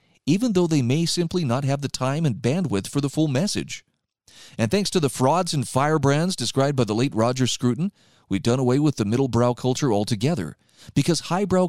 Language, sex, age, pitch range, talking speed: English, male, 40-59, 115-155 Hz, 195 wpm